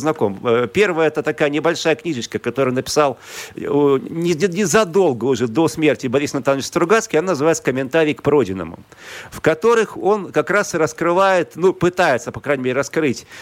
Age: 40-59